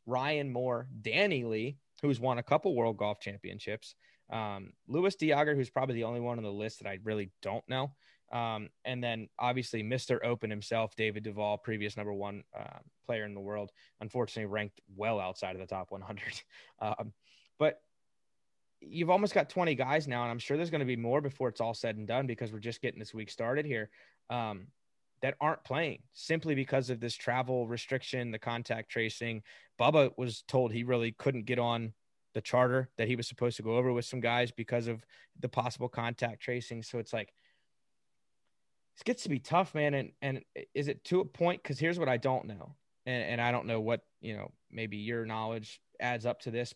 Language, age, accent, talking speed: English, 20-39, American, 200 wpm